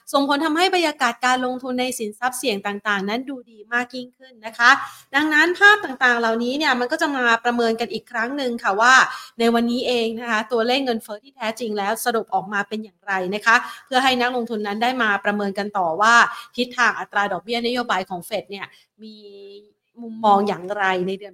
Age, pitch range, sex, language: 30-49, 205-245 Hz, female, Thai